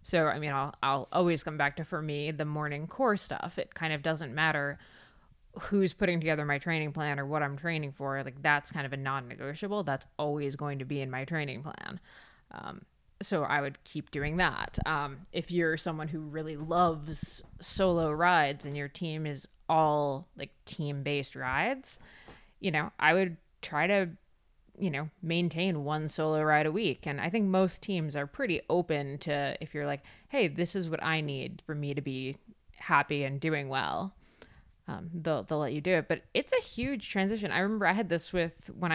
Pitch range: 145-175 Hz